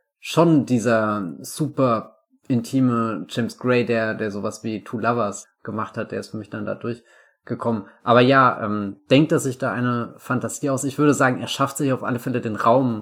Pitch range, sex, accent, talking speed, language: 110-130 Hz, male, German, 195 wpm, German